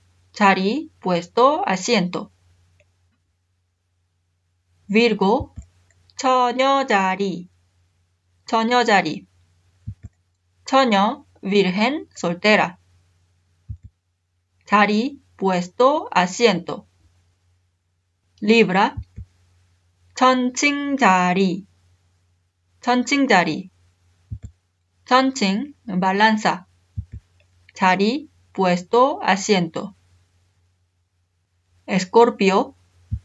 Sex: female